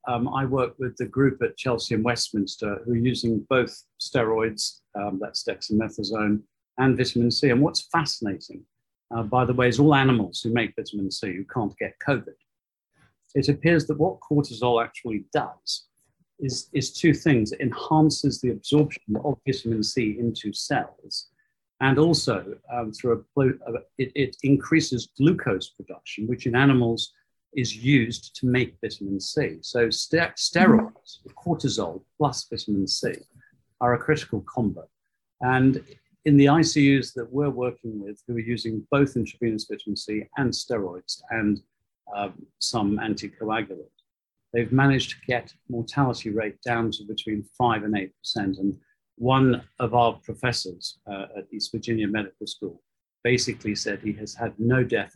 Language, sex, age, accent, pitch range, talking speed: English, male, 50-69, British, 110-135 Hz, 150 wpm